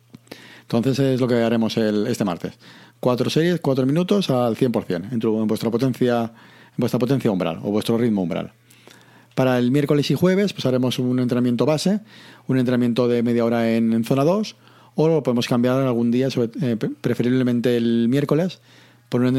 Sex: male